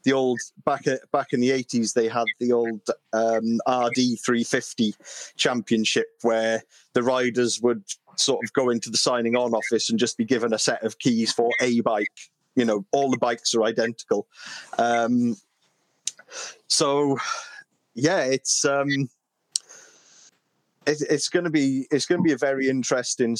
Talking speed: 160 wpm